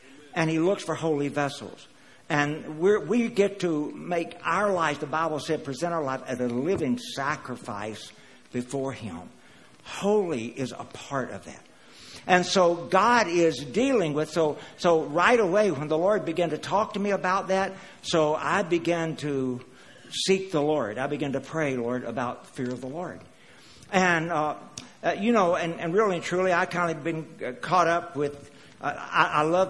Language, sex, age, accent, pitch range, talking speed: English, male, 60-79, American, 145-180 Hz, 175 wpm